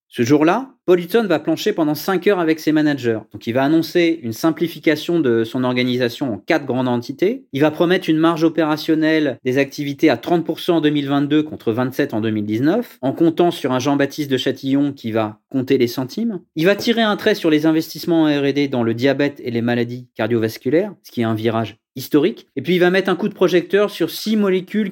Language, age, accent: French, 30-49, French